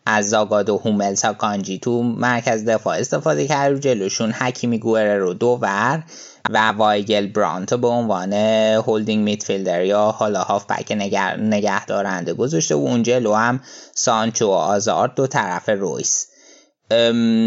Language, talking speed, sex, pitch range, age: Persian, 135 wpm, male, 110-135 Hz, 20-39